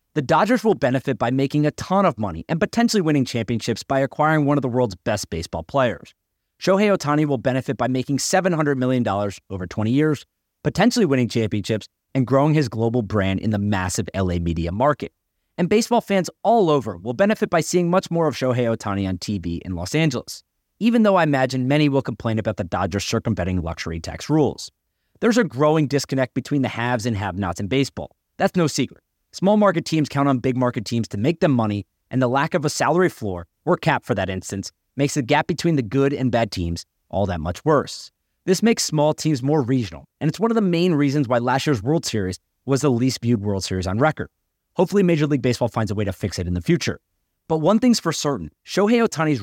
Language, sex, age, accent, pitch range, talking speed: English, male, 30-49, American, 105-155 Hz, 215 wpm